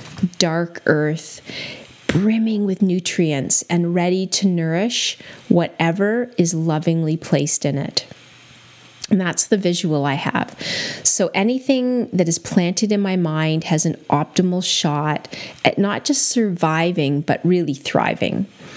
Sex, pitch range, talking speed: female, 155-185 Hz, 130 wpm